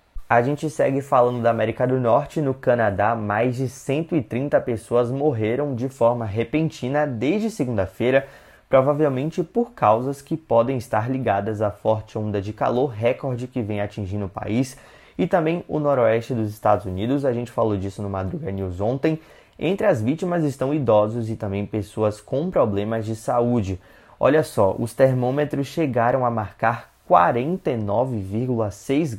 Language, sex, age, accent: Portuguese, male, 20-39, Brazilian